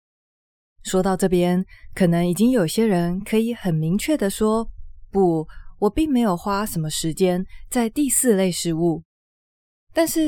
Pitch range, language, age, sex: 175-235 Hz, Chinese, 20-39, female